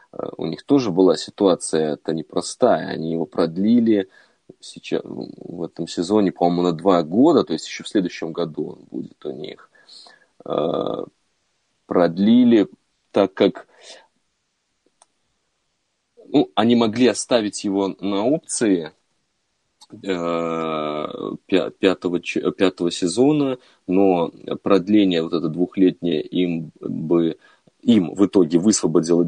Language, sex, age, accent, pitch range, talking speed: Russian, male, 30-49, native, 85-100 Hz, 110 wpm